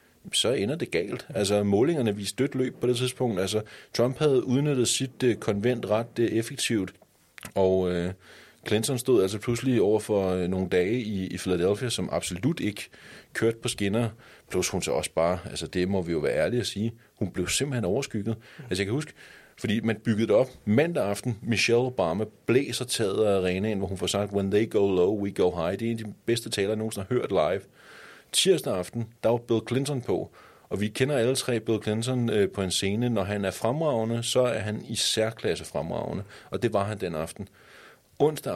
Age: 30-49